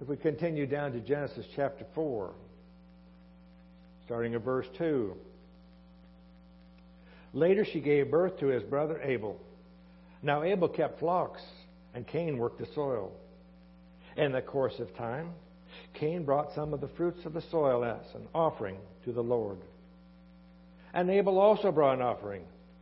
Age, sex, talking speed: 60-79, male, 145 wpm